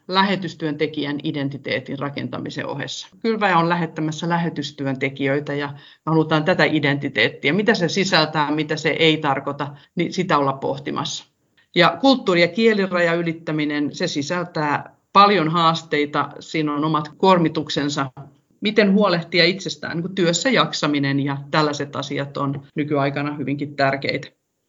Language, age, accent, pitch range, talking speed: Finnish, 40-59, native, 145-175 Hz, 115 wpm